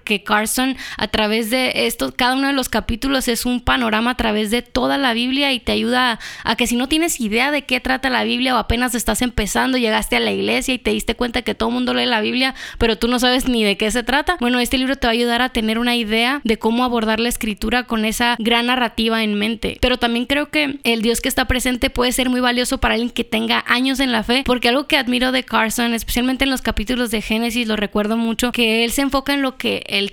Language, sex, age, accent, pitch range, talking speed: Spanish, female, 20-39, Mexican, 225-255 Hz, 255 wpm